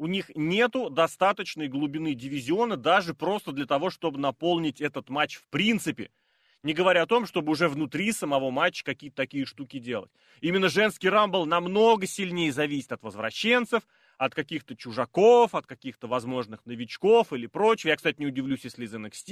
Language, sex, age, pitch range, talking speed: Russian, male, 30-49, 135-195 Hz, 165 wpm